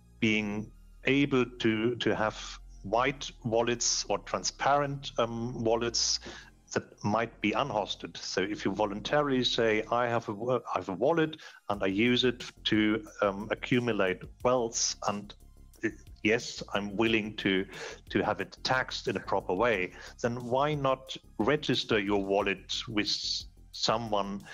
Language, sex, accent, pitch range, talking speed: English, male, German, 100-120 Hz, 140 wpm